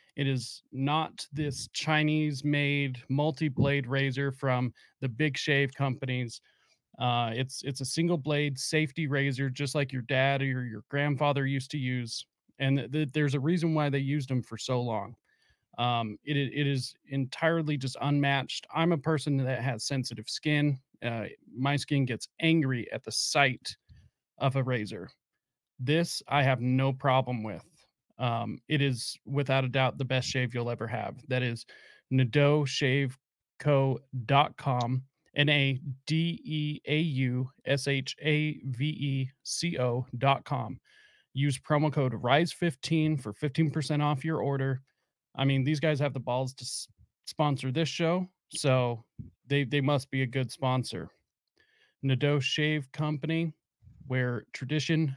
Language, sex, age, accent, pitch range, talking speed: English, male, 30-49, American, 130-150 Hz, 135 wpm